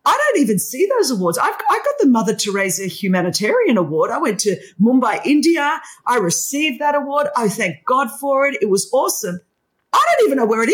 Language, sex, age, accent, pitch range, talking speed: English, female, 40-59, Australian, 195-285 Hz, 210 wpm